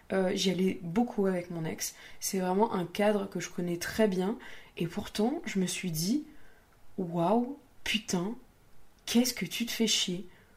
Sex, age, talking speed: female, 20-39, 170 wpm